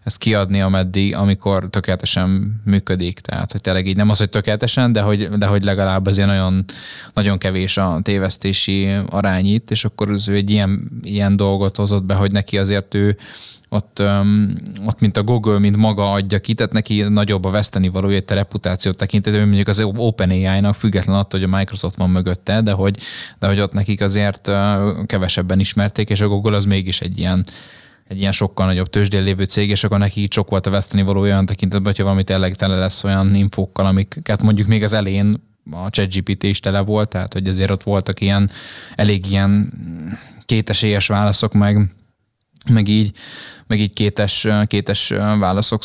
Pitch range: 95-105 Hz